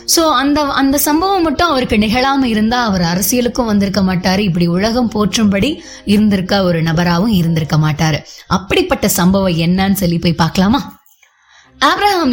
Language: Tamil